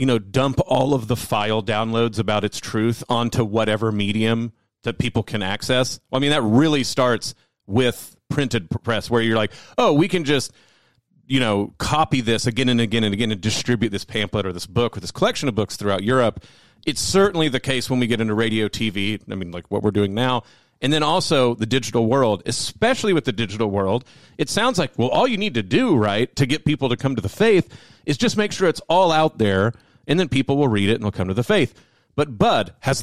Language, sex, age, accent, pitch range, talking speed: English, male, 40-59, American, 110-155 Hz, 230 wpm